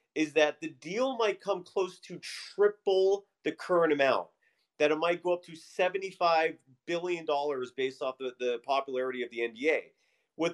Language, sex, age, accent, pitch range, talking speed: English, male, 40-59, American, 145-220 Hz, 170 wpm